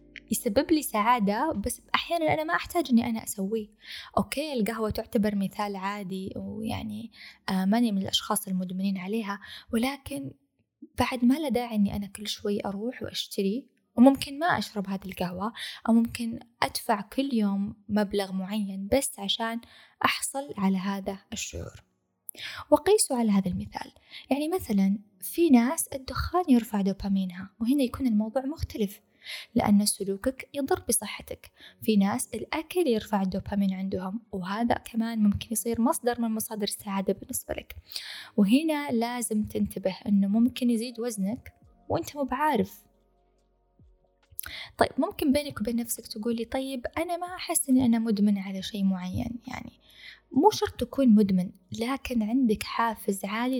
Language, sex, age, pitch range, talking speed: Arabic, female, 20-39, 200-255 Hz, 130 wpm